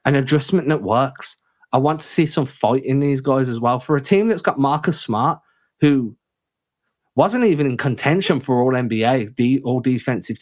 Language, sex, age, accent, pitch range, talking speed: English, male, 20-39, British, 115-145 Hz, 180 wpm